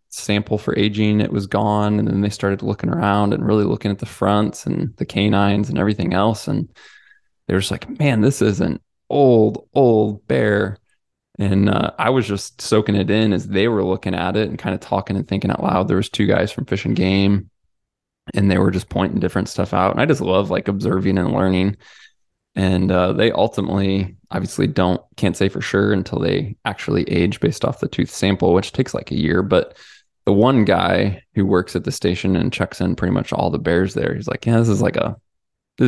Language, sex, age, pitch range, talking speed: English, male, 20-39, 95-105 Hz, 220 wpm